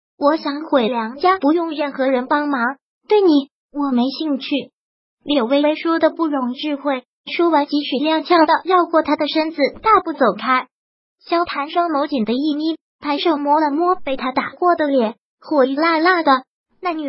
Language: Chinese